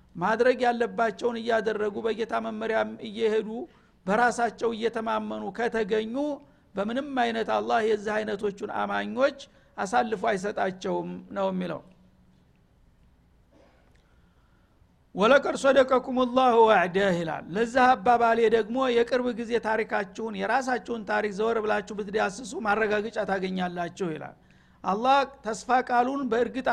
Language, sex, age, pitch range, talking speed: Amharic, male, 60-79, 200-245 Hz, 85 wpm